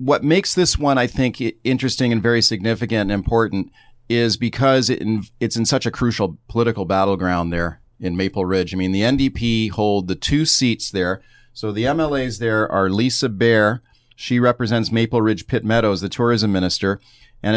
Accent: American